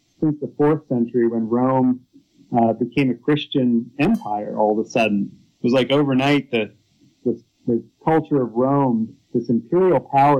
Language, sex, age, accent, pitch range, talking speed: English, male, 40-59, American, 120-155 Hz, 160 wpm